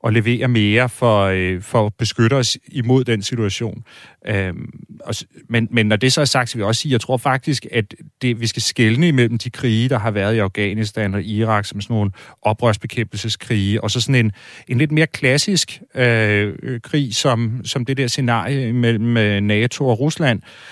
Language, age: Danish, 40-59